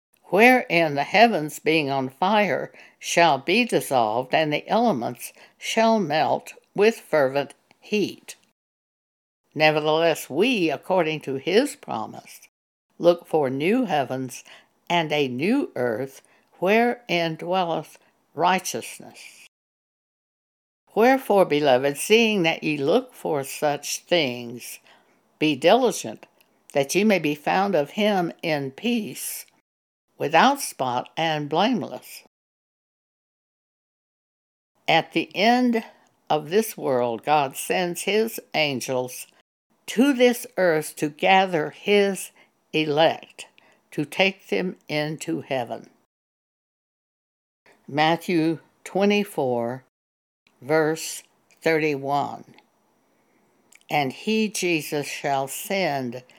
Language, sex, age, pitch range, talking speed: English, female, 60-79, 145-205 Hz, 95 wpm